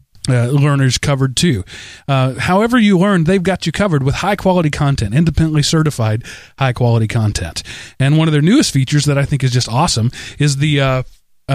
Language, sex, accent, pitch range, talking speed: English, male, American, 130-155 Hz, 185 wpm